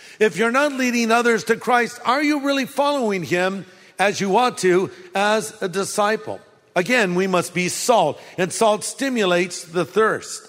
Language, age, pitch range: English, 50-69, 160-230 Hz